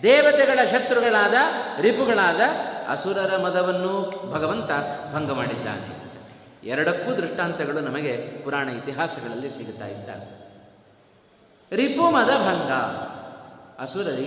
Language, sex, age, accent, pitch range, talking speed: Kannada, male, 30-49, native, 125-190 Hz, 80 wpm